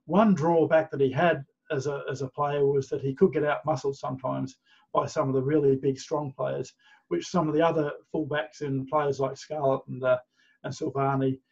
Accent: Australian